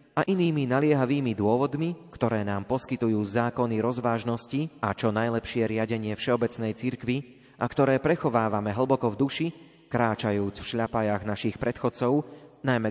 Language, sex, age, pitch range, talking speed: Slovak, male, 30-49, 115-145 Hz, 125 wpm